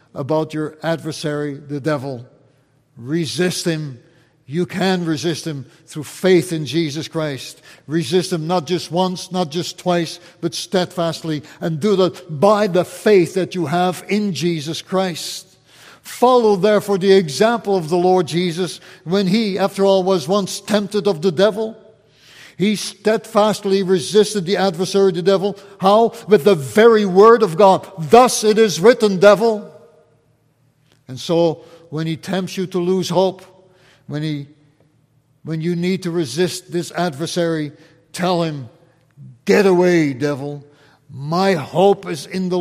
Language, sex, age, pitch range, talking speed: English, male, 60-79, 155-190 Hz, 145 wpm